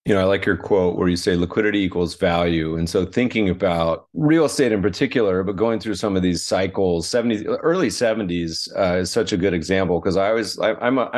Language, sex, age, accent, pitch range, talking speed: English, male, 30-49, American, 90-105 Hz, 225 wpm